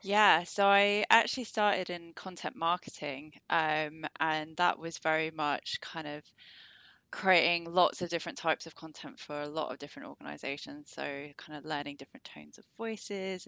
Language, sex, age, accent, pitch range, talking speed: English, female, 20-39, British, 150-175 Hz, 165 wpm